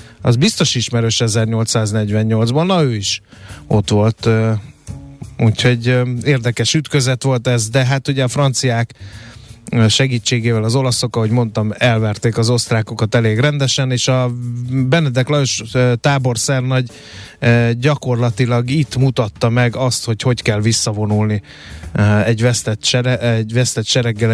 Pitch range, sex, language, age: 110-130 Hz, male, Hungarian, 20-39